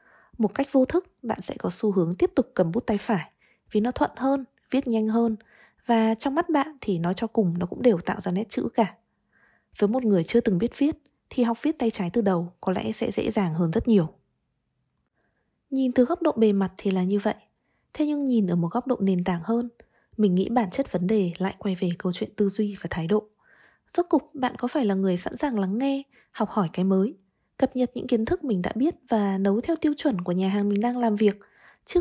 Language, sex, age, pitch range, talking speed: Vietnamese, female, 20-39, 195-255 Hz, 245 wpm